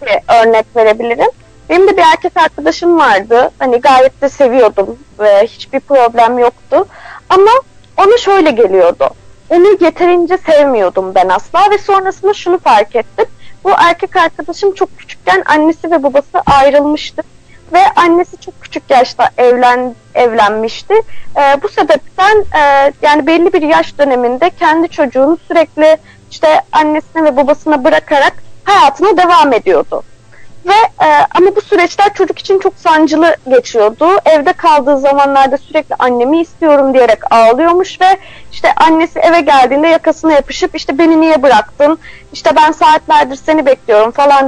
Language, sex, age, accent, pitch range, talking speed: Turkish, female, 30-49, native, 270-365 Hz, 135 wpm